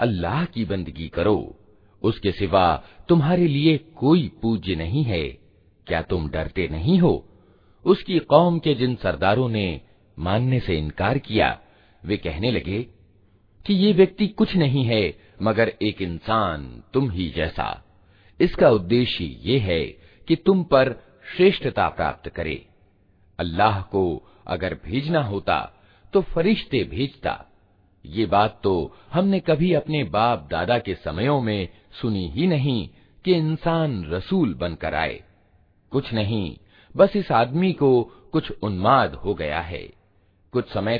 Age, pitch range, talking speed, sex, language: 50-69, 95-150 Hz, 135 wpm, male, Hindi